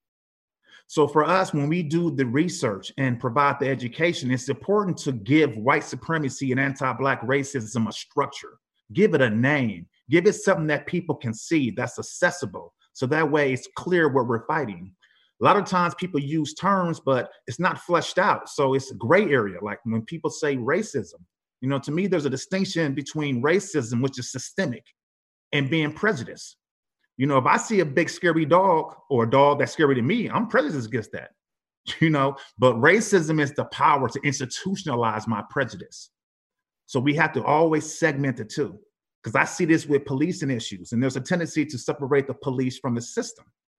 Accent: American